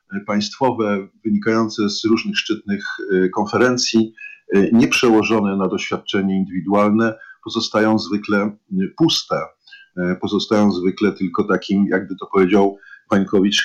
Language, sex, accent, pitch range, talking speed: Polish, male, native, 100-120 Hz, 95 wpm